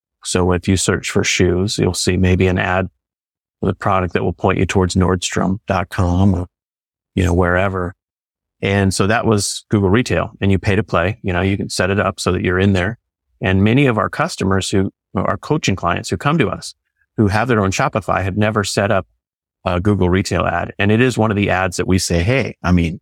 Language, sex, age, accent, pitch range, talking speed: English, male, 30-49, American, 90-110 Hz, 225 wpm